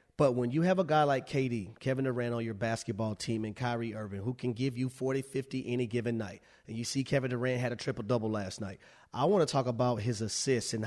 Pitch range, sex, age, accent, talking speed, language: 125-150 Hz, male, 30-49, American, 245 wpm, English